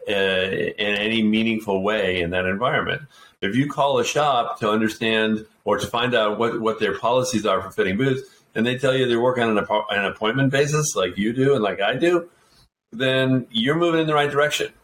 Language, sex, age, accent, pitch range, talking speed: English, male, 50-69, American, 105-135 Hz, 210 wpm